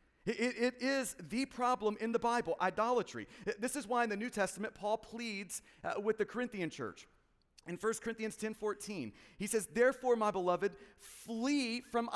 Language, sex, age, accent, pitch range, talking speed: English, male, 40-59, American, 220-265 Hz, 170 wpm